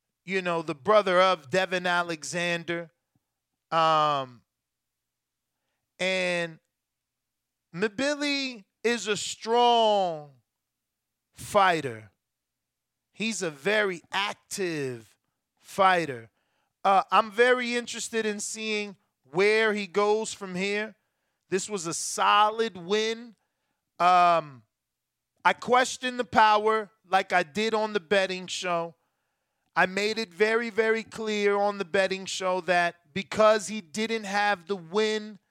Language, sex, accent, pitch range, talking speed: English, male, American, 175-215 Hz, 110 wpm